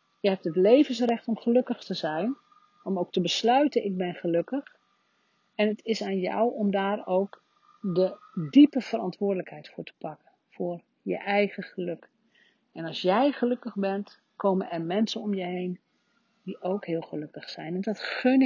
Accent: Dutch